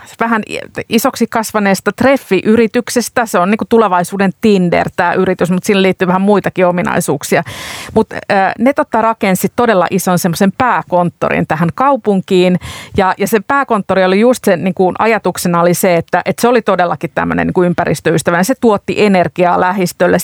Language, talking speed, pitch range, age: Finnish, 140 wpm, 175-205 Hz, 50-69